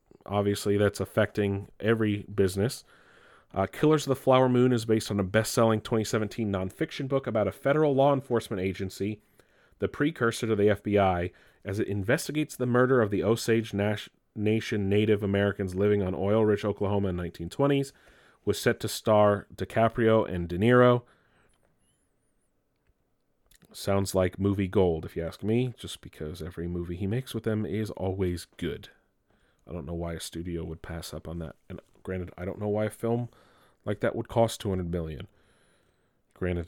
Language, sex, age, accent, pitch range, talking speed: English, male, 30-49, American, 95-115 Hz, 165 wpm